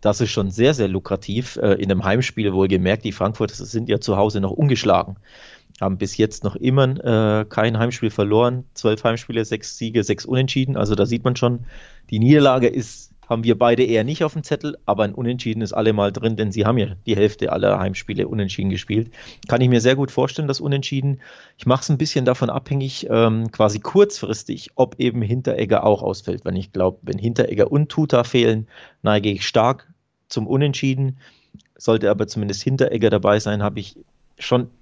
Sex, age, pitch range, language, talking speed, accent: male, 30-49, 105-125 Hz, German, 195 wpm, German